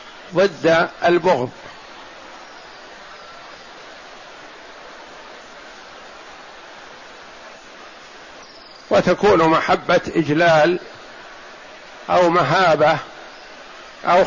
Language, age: Arabic, 50-69